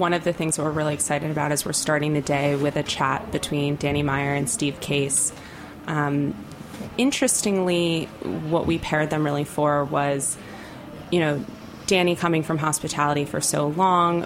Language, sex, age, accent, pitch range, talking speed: English, female, 20-39, American, 145-165 Hz, 175 wpm